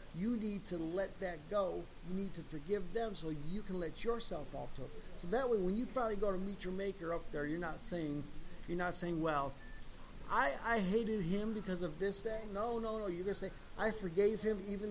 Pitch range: 165-200 Hz